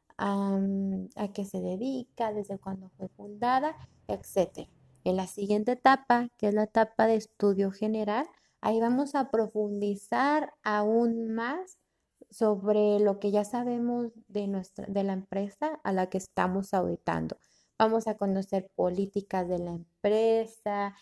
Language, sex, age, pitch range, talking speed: Spanish, female, 20-39, 195-230 Hz, 140 wpm